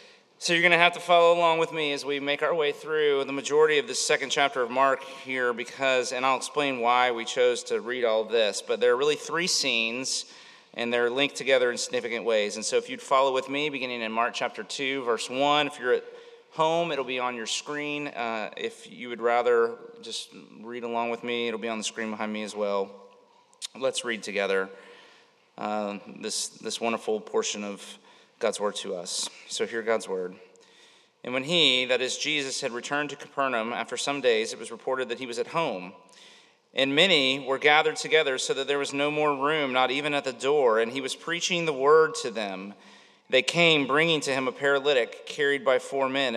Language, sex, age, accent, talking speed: English, male, 30-49, American, 215 wpm